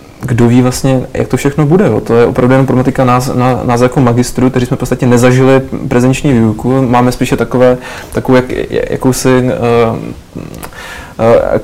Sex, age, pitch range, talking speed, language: male, 20-39, 120-130 Hz, 170 wpm, Czech